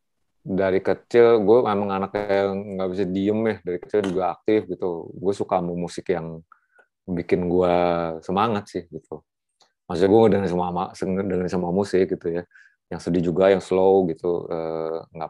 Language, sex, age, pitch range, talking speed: Indonesian, male, 30-49, 85-95 Hz, 150 wpm